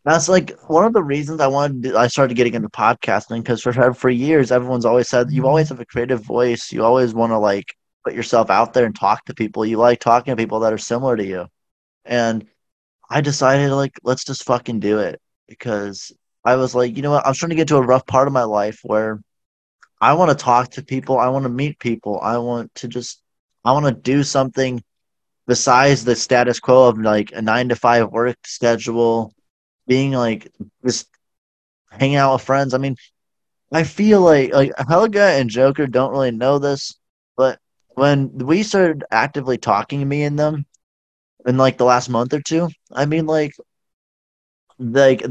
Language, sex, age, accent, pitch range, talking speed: English, male, 20-39, American, 115-140 Hz, 200 wpm